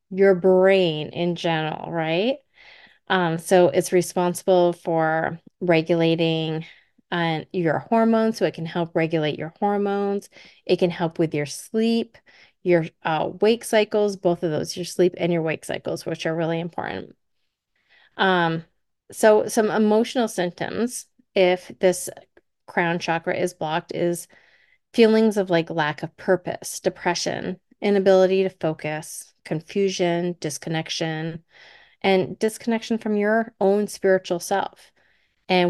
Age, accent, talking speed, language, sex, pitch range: 30-49, American, 130 wpm, English, female, 165-200 Hz